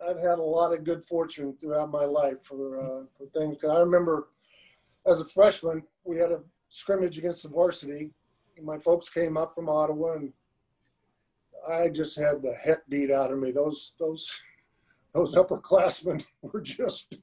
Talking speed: 175 wpm